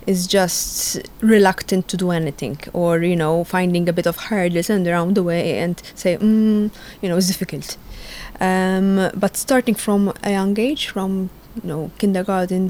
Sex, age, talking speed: female, 20-39, 165 wpm